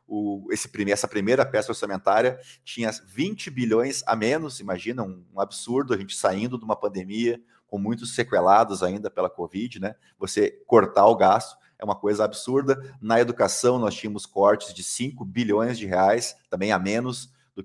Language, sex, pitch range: Portuguese, male, 100-120 Hz